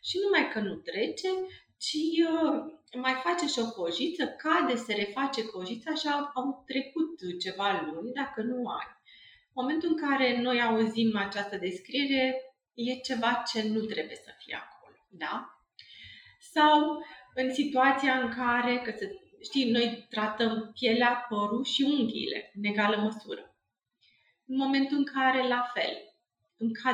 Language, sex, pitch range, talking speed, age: Romanian, female, 220-290 Hz, 145 wpm, 30-49